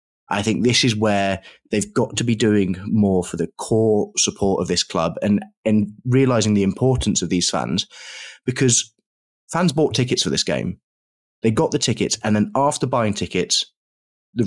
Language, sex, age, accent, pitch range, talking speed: English, male, 20-39, British, 100-125 Hz, 180 wpm